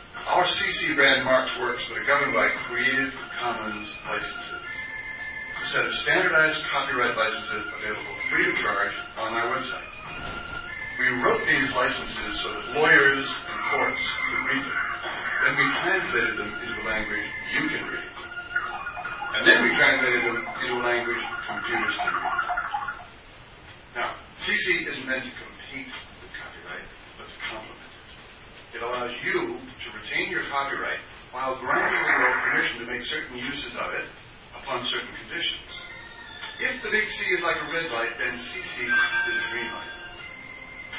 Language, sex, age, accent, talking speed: English, female, 40-59, American, 145 wpm